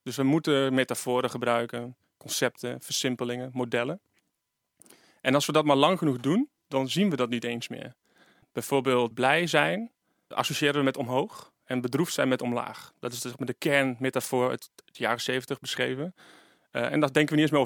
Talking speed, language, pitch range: 180 wpm, Dutch, 125-150 Hz